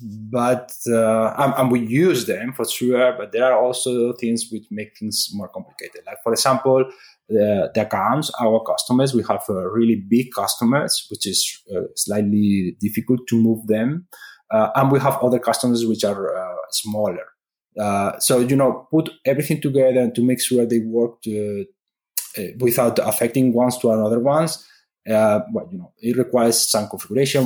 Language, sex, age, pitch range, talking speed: English, male, 20-39, 110-135 Hz, 170 wpm